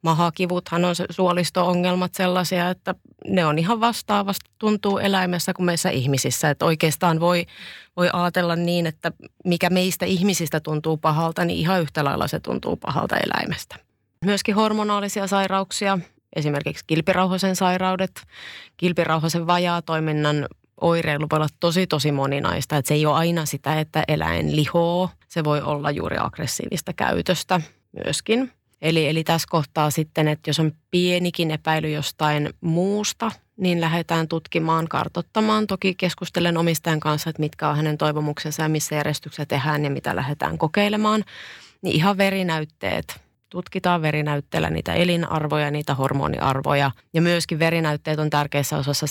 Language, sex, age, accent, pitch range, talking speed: Finnish, female, 30-49, native, 150-180 Hz, 135 wpm